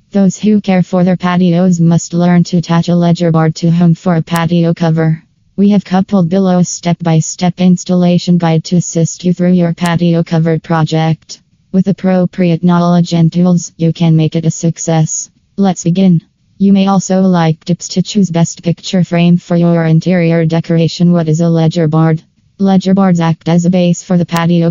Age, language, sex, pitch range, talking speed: 20-39, English, female, 165-180 Hz, 185 wpm